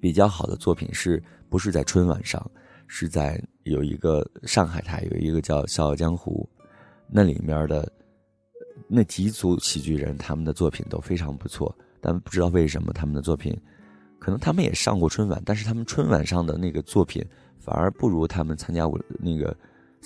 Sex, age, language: male, 20-39, Chinese